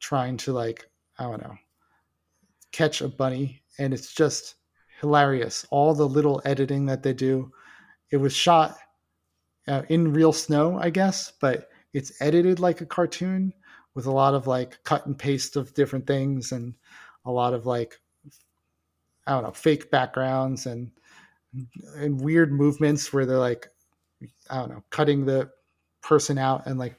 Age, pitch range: 30-49, 130-155 Hz